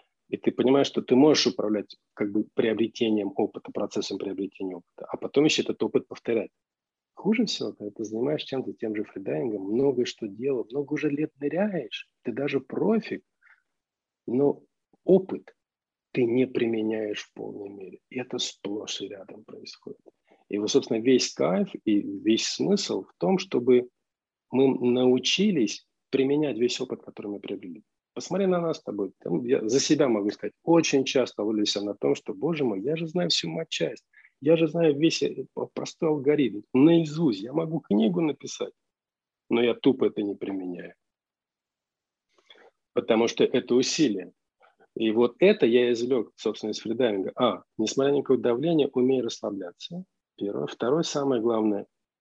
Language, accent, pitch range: Russian, native, 110-160 Hz